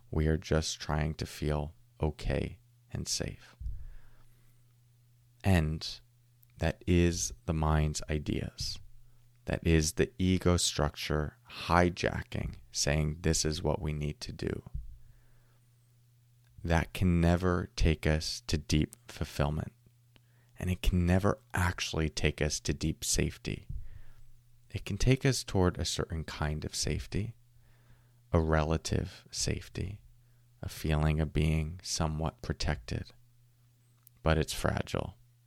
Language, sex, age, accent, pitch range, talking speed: English, male, 30-49, American, 80-120 Hz, 115 wpm